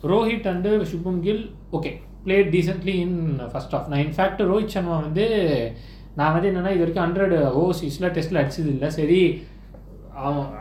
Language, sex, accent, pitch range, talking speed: Tamil, male, native, 145-195 Hz, 145 wpm